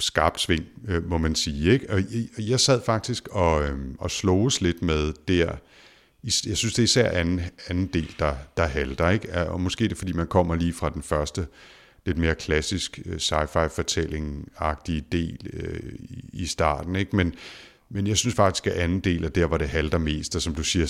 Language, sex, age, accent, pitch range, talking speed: Danish, male, 60-79, native, 75-95 Hz, 190 wpm